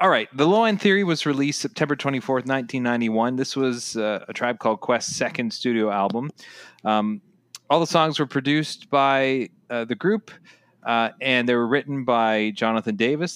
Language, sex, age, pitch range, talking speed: English, male, 30-49, 105-145 Hz, 175 wpm